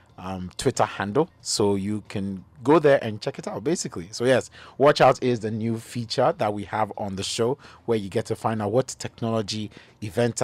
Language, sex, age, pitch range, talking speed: English, male, 30-49, 105-130 Hz, 205 wpm